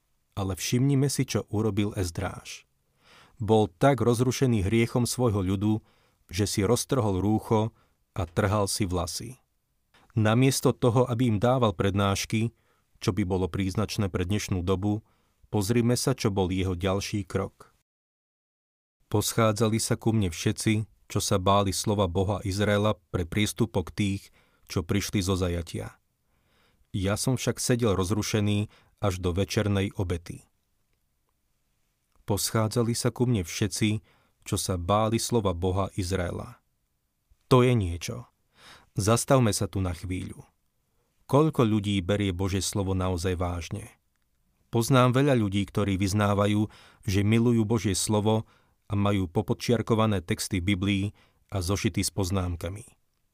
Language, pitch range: Slovak, 95-115 Hz